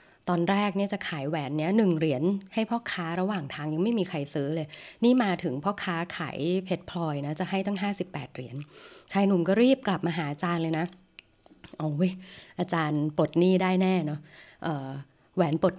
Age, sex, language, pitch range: 20-39, female, Thai, 155-195 Hz